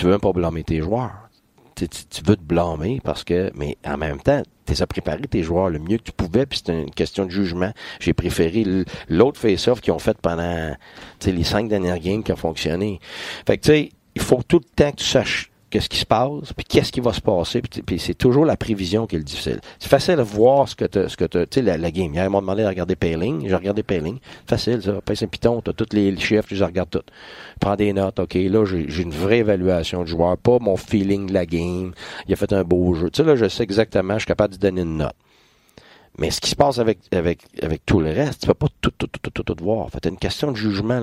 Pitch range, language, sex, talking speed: 85-105 Hz, French, male, 275 wpm